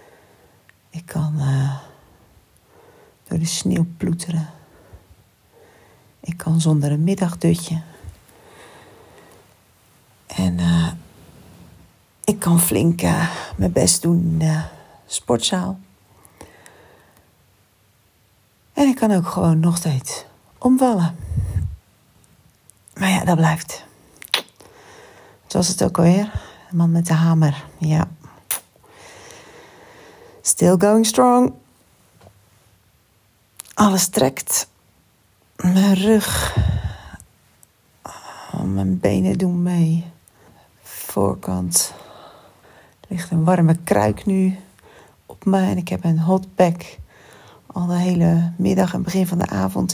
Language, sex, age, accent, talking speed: Dutch, female, 40-59, Dutch, 100 wpm